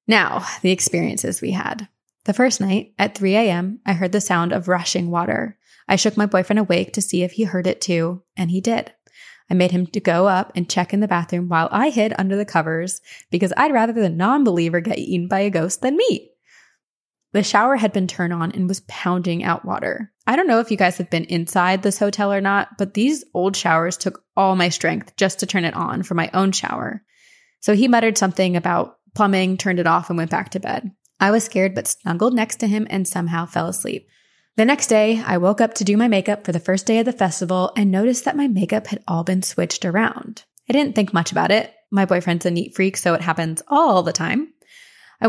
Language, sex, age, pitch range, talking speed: English, female, 20-39, 180-220 Hz, 230 wpm